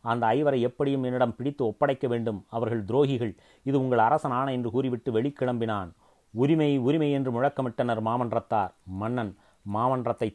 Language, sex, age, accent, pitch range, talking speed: Tamil, male, 30-49, native, 115-135 Hz, 130 wpm